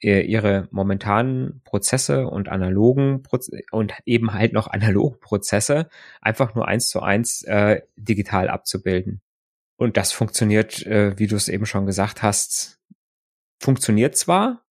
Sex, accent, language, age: male, German, German, 20-39